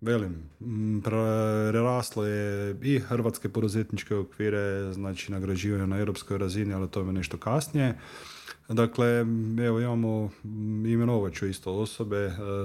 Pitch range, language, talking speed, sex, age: 100-115 Hz, Croatian, 110 wpm, male, 30-49